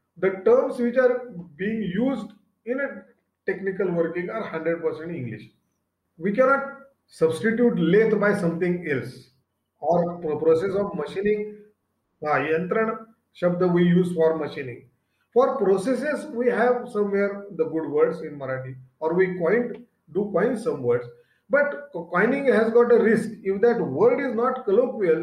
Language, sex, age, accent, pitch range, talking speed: Marathi, male, 40-59, native, 165-235 Hz, 145 wpm